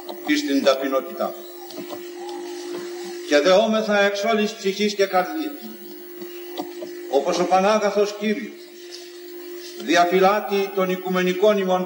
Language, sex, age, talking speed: Greek, male, 50-69, 85 wpm